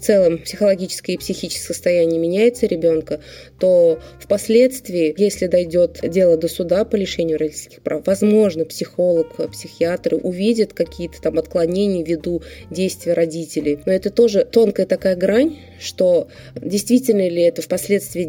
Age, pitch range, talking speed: 20-39, 165-195 Hz, 130 wpm